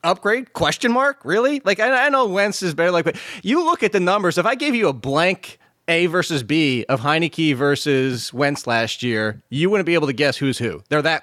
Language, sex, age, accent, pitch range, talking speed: English, male, 20-39, American, 140-180 Hz, 230 wpm